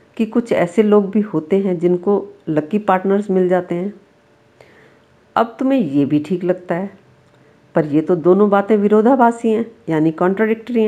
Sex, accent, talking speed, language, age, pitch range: female, native, 160 wpm, Hindi, 50-69, 175-215 Hz